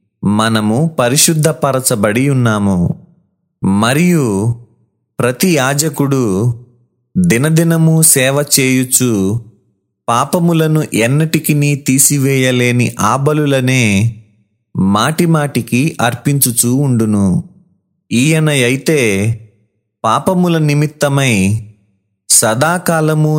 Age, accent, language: 30-49, native, Telugu